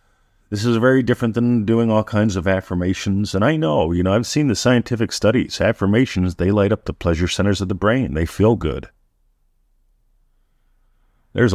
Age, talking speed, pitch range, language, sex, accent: 50-69, 175 wpm, 80-105 Hz, English, male, American